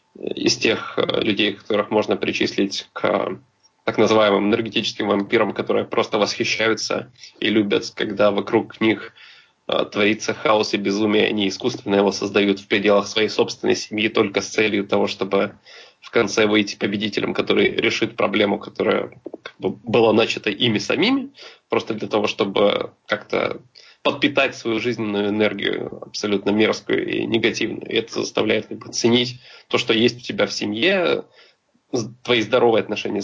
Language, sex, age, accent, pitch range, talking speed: Russian, male, 20-39, native, 105-115 Hz, 140 wpm